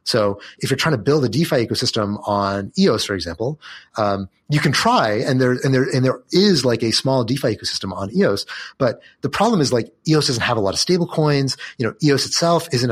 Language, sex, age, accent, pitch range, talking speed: English, male, 30-49, American, 105-140 Hz, 230 wpm